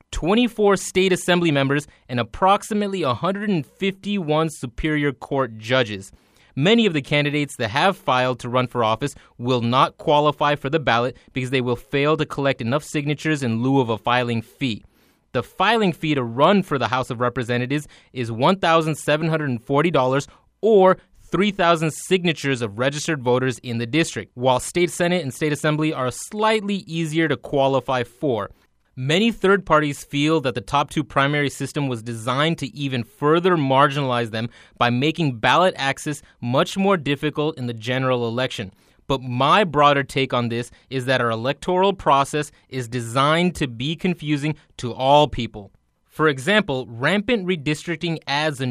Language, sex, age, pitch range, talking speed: English, male, 20-39, 130-170 Hz, 155 wpm